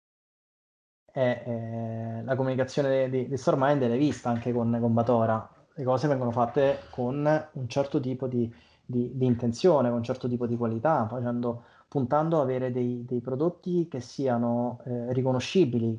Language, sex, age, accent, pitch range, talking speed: Italian, male, 20-39, native, 120-145 Hz, 145 wpm